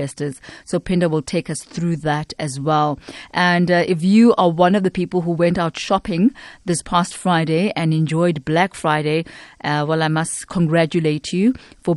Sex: female